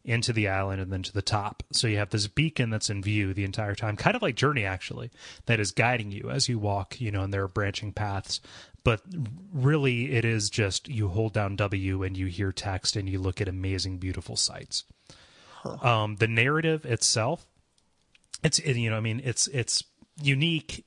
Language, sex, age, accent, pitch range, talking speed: English, male, 30-49, American, 105-125 Hz, 200 wpm